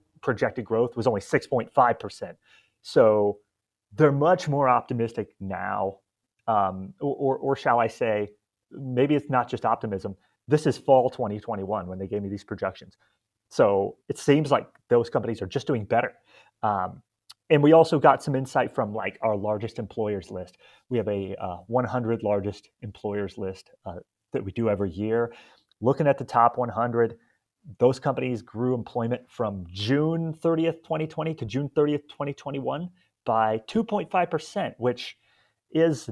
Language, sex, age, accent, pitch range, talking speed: English, male, 30-49, American, 105-145 Hz, 150 wpm